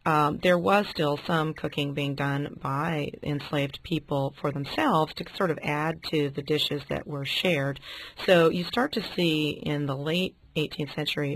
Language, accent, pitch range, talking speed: English, American, 140-160 Hz, 175 wpm